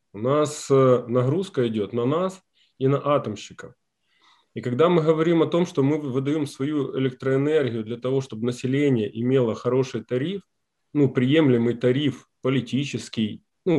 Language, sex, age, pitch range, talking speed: Ukrainian, male, 20-39, 120-150 Hz, 140 wpm